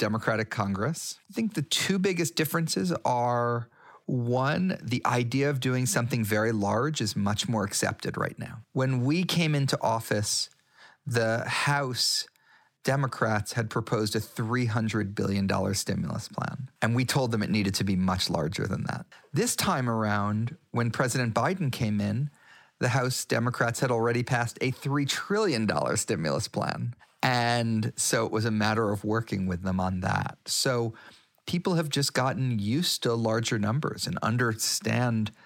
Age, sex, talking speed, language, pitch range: 40-59, male, 155 wpm, English, 110-145 Hz